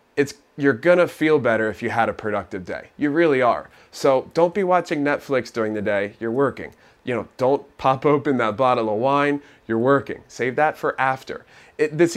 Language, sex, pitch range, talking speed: English, male, 110-145 Hz, 200 wpm